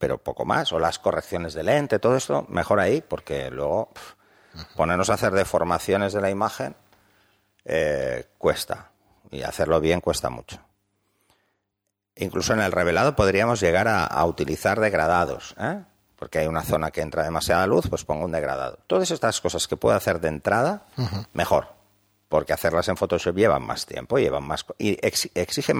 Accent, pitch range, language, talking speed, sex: Spanish, 95-105 Hz, Spanish, 160 wpm, male